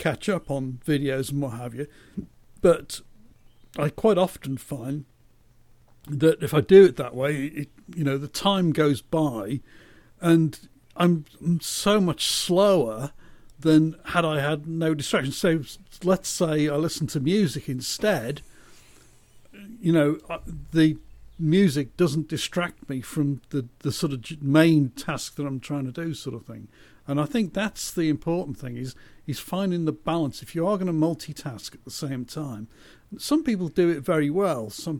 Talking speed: 165 wpm